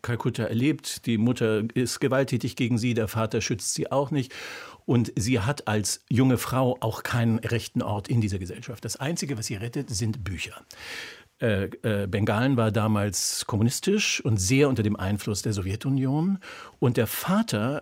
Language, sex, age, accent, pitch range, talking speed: German, male, 50-69, German, 110-135 Hz, 170 wpm